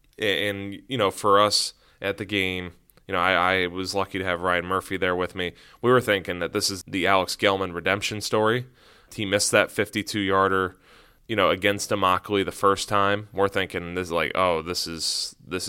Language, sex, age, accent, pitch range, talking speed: English, male, 20-39, American, 90-105 Hz, 205 wpm